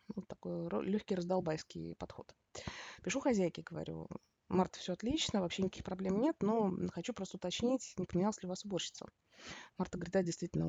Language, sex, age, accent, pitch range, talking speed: Russian, female, 20-39, native, 160-205 Hz, 165 wpm